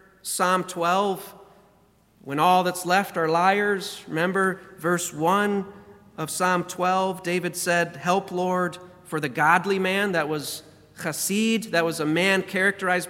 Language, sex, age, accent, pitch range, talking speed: English, male, 40-59, American, 155-195 Hz, 135 wpm